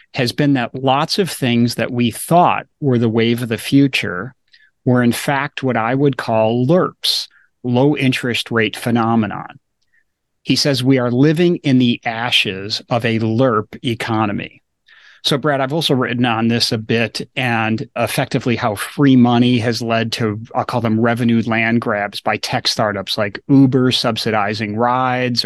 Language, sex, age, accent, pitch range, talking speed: English, male, 30-49, American, 115-135 Hz, 165 wpm